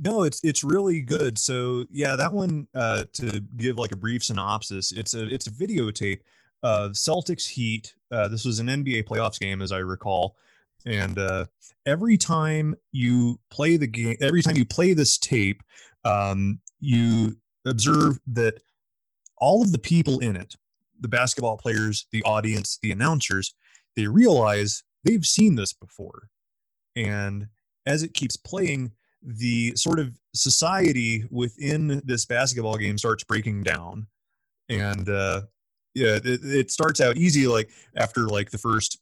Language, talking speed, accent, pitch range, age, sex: English, 155 wpm, American, 105-130 Hz, 30-49, male